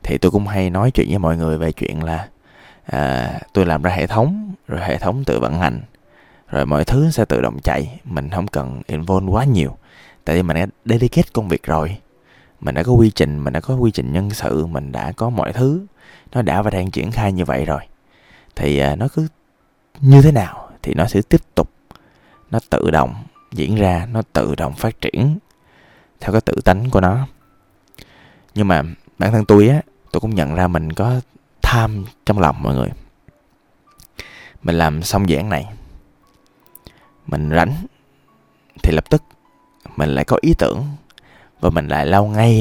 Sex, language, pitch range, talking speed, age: male, Vietnamese, 80-115 Hz, 190 wpm, 20-39